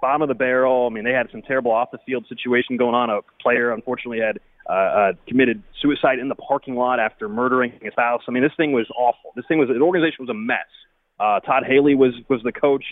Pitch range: 120-145 Hz